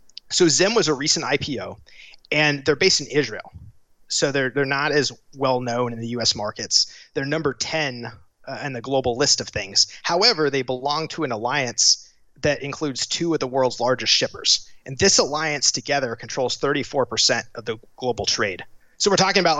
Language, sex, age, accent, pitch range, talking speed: English, male, 30-49, American, 120-155 Hz, 180 wpm